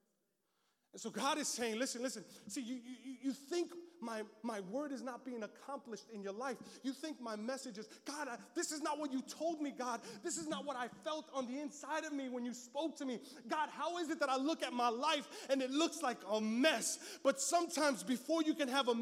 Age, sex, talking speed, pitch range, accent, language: 20-39, male, 240 wpm, 255-310 Hz, American, English